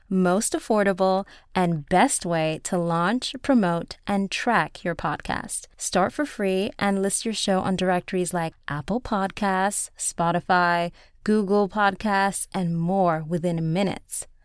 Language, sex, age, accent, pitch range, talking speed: English, female, 20-39, American, 175-235 Hz, 130 wpm